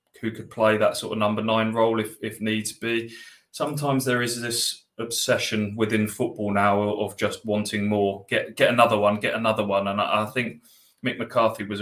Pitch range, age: 100-110 Hz, 20-39